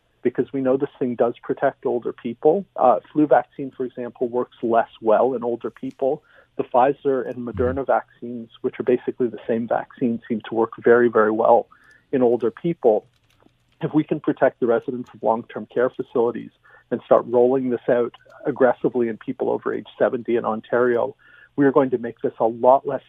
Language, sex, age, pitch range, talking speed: English, male, 40-59, 115-130 Hz, 185 wpm